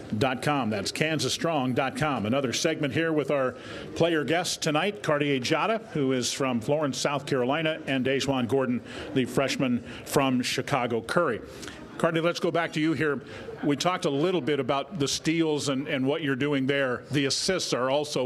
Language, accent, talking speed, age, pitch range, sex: English, American, 175 wpm, 40-59, 135-160 Hz, male